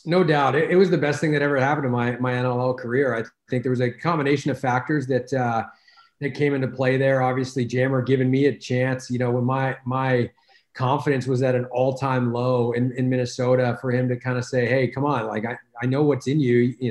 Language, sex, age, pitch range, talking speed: English, male, 30-49, 125-140 Hz, 245 wpm